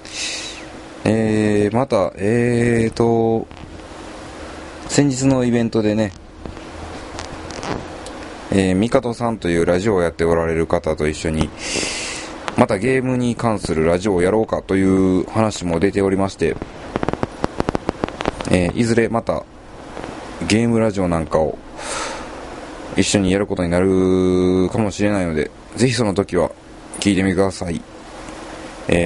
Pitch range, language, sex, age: 90-110 Hz, Japanese, male, 20-39